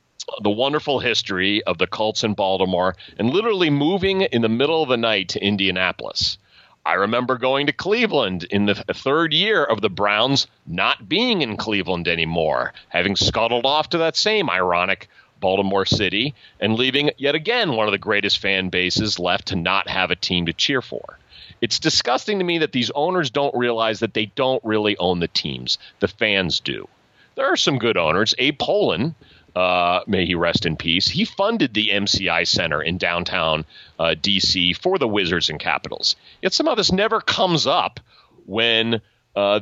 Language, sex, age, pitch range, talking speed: English, male, 40-59, 95-135 Hz, 180 wpm